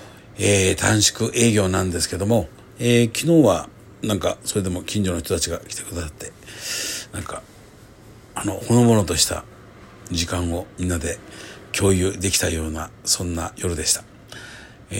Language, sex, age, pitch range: Japanese, male, 60-79, 90-110 Hz